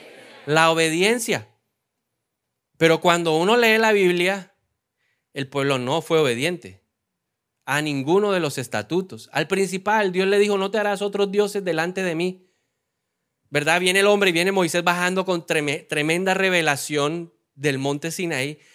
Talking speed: 145 wpm